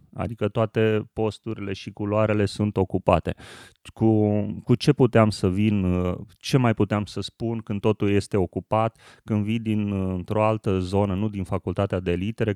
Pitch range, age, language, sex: 95-115 Hz, 30-49, Romanian, male